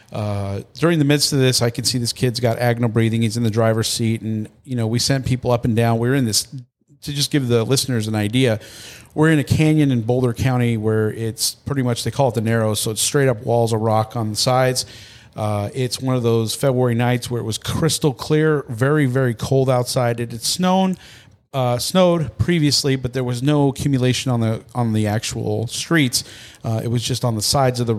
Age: 40-59